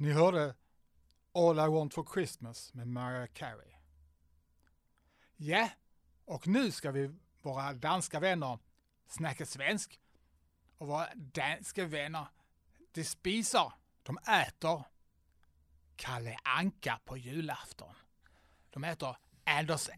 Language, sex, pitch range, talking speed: Swedish, male, 125-210 Hz, 110 wpm